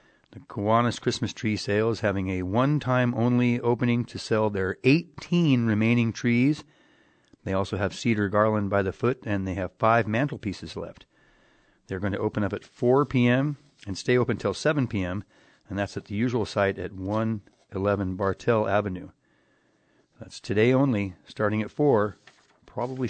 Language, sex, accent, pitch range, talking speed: English, male, American, 105-130 Hz, 155 wpm